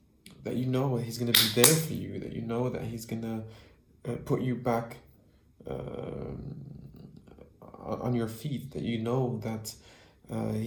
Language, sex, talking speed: English, male, 155 wpm